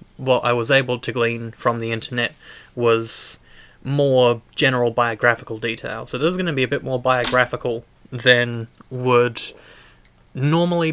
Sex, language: male, English